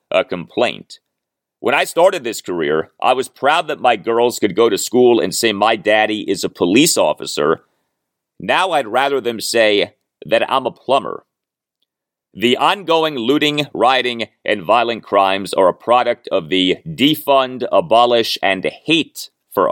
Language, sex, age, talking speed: English, male, 40-59, 155 wpm